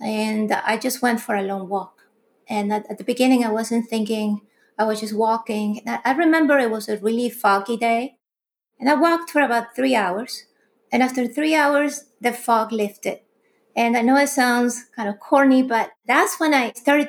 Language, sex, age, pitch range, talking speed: English, female, 30-49, 215-265 Hz, 195 wpm